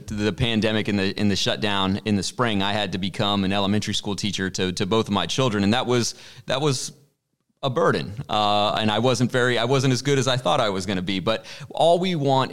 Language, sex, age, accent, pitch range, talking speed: English, male, 30-49, American, 105-130 Hz, 250 wpm